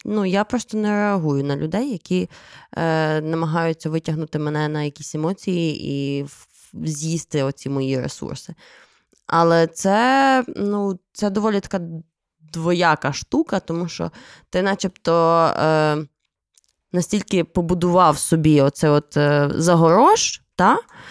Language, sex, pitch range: Ukrainian, female, 155-195 Hz